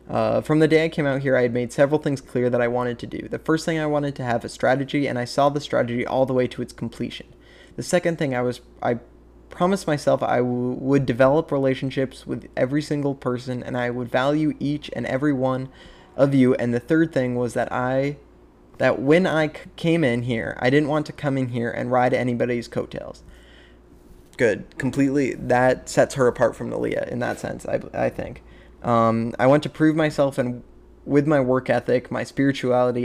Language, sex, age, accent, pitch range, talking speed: English, male, 20-39, American, 120-140 Hz, 210 wpm